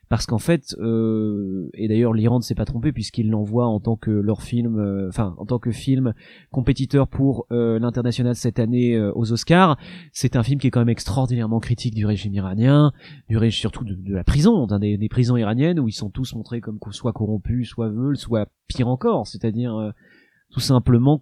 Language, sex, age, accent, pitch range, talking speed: French, male, 20-39, French, 115-140 Hz, 205 wpm